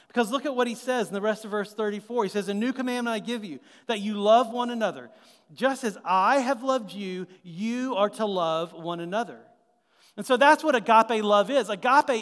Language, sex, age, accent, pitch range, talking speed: English, male, 40-59, American, 190-245 Hz, 220 wpm